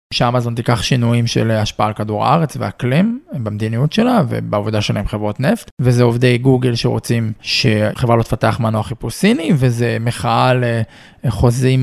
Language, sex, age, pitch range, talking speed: Hebrew, male, 20-39, 125-155 Hz, 135 wpm